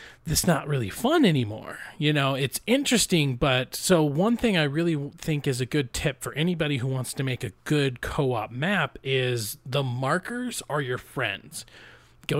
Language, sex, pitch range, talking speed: English, male, 125-165 Hz, 180 wpm